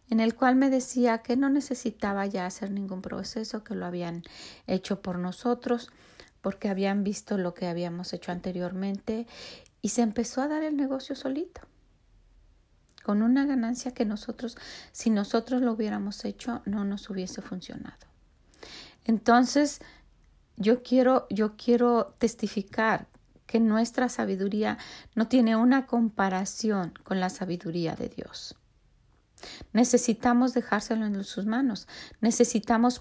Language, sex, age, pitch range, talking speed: Spanish, female, 40-59, 190-245 Hz, 130 wpm